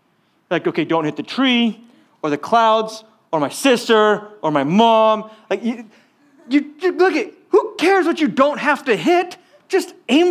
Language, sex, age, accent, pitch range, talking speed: English, male, 30-49, American, 170-280 Hz, 180 wpm